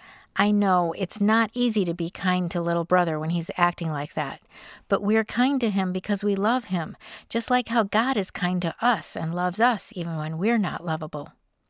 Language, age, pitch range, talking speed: English, 50-69, 170-215 Hz, 210 wpm